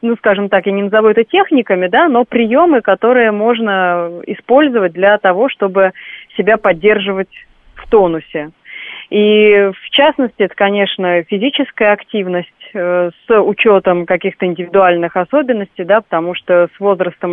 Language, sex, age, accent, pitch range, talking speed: Russian, female, 30-49, native, 175-215 Hz, 135 wpm